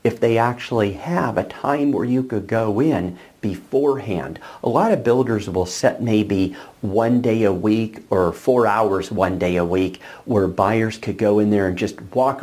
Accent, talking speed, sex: American, 190 wpm, male